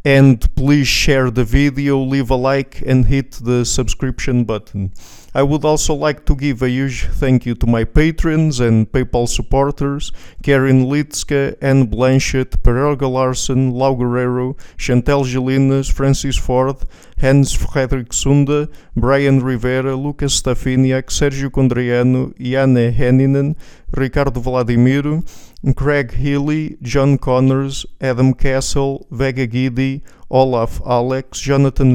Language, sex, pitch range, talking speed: English, male, 125-140 Hz, 120 wpm